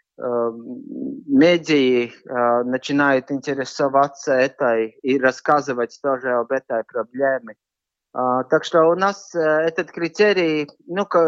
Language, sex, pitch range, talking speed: Russian, male, 140-175 Hz, 90 wpm